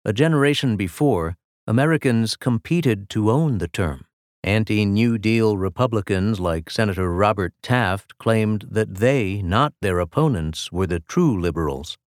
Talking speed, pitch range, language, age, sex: 130 wpm, 95-135 Hz, English, 50-69, male